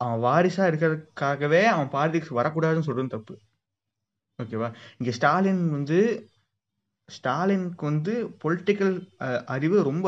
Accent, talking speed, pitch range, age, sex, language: native, 100 wpm, 120-165 Hz, 20-39, male, Tamil